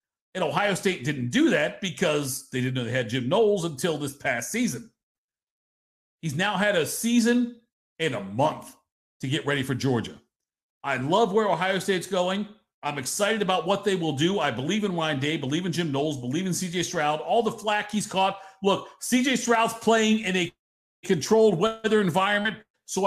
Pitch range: 165-220 Hz